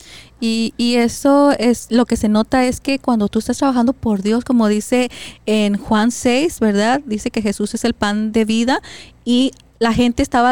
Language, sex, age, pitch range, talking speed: Spanish, female, 30-49, 205-250 Hz, 195 wpm